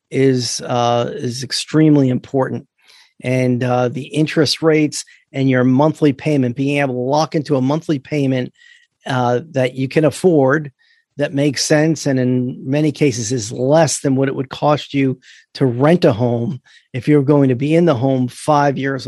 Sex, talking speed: male, 175 wpm